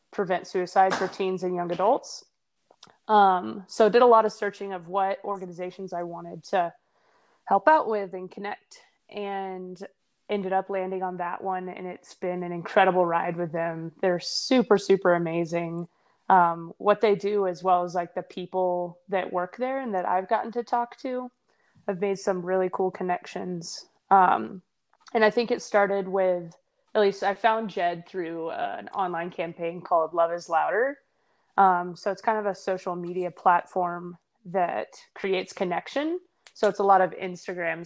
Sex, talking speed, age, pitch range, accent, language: female, 175 wpm, 20-39, 175-205 Hz, American, English